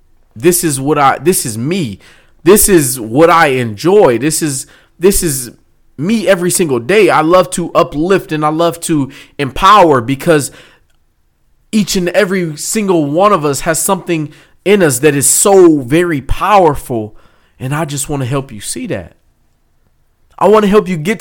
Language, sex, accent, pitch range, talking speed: English, male, American, 125-175 Hz, 175 wpm